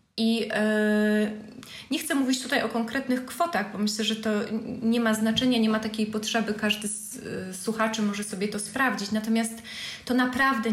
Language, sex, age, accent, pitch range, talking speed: Polish, female, 20-39, native, 210-240 Hz, 160 wpm